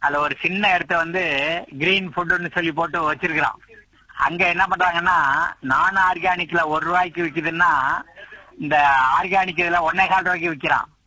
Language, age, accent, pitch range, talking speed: Tamil, 50-69, native, 165-190 Hz, 125 wpm